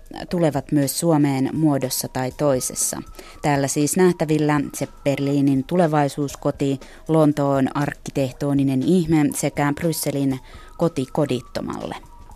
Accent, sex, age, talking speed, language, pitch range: native, female, 20-39, 85 wpm, Finnish, 140-175 Hz